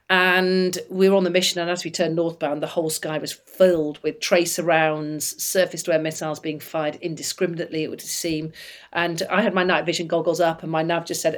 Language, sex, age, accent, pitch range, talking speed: English, female, 40-59, British, 160-185 Hz, 210 wpm